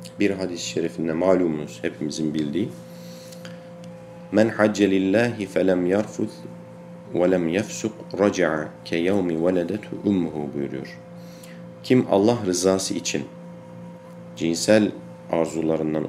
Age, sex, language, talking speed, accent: 50-69, male, Turkish, 85 wpm, native